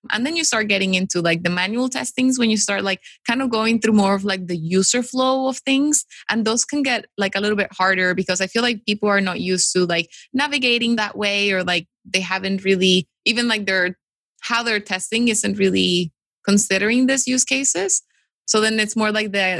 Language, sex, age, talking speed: English, female, 20-39, 215 wpm